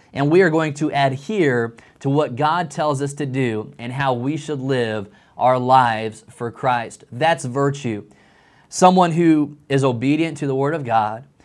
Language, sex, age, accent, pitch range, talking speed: English, male, 20-39, American, 125-150 Hz, 175 wpm